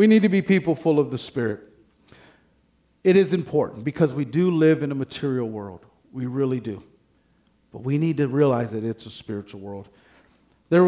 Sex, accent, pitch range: male, American, 125-165 Hz